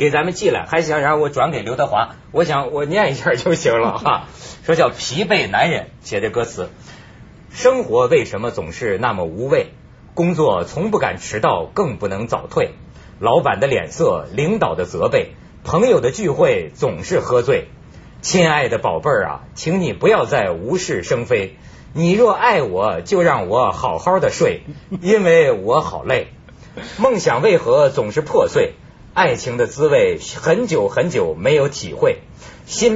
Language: Chinese